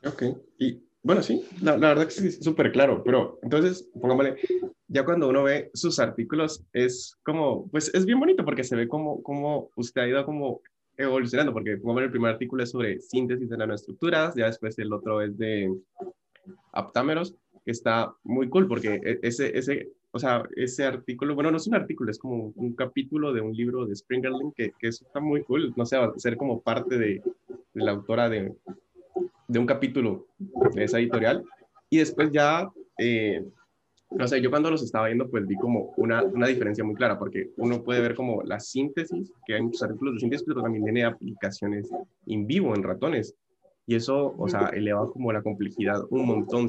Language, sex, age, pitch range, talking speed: Spanish, male, 20-39, 115-160 Hz, 195 wpm